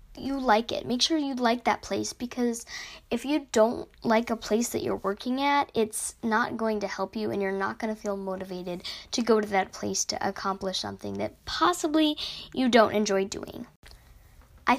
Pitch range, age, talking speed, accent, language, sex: 205-245 Hz, 10-29, 195 wpm, American, English, female